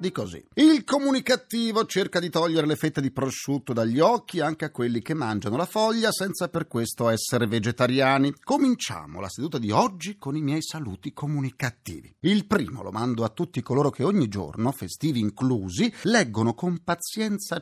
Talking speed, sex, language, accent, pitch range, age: 170 wpm, male, Italian, native, 125-200 Hz, 40-59